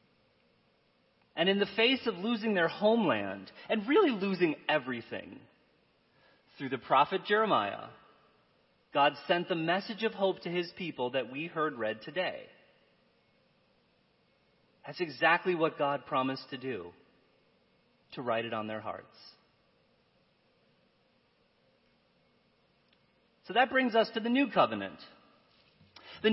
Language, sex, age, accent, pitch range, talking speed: English, male, 40-59, American, 150-210 Hz, 120 wpm